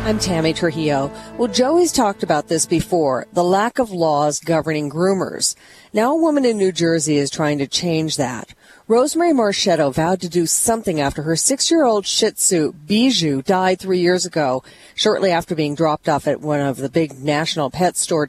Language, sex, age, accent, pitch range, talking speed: English, female, 40-59, American, 155-215 Hz, 180 wpm